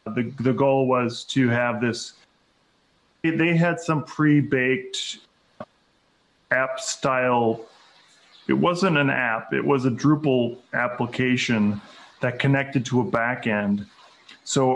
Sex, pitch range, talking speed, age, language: male, 125-145 Hz, 115 wpm, 40-59, English